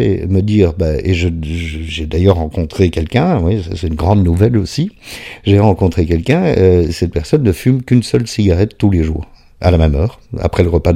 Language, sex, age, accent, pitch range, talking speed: French, male, 50-69, French, 85-110 Hz, 205 wpm